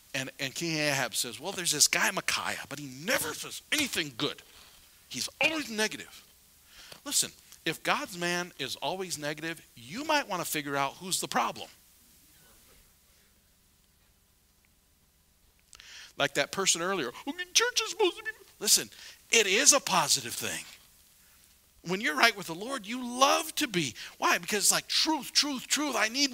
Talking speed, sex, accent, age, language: 155 wpm, male, American, 50-69, English